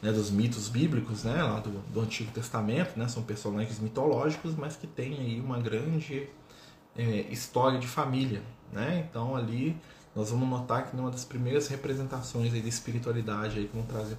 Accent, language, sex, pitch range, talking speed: Brazilian, Portuguese, male, 110-130 Hz, 180 wpm